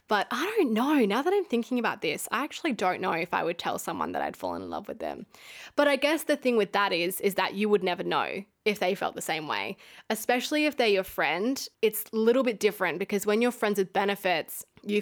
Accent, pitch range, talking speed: Australian, 185-220 Hz, 250 wpm